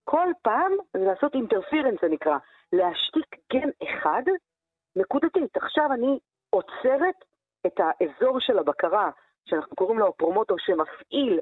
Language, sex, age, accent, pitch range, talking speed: Hebrew, female, 50-69, native, 190-310 Hz, 120 wpm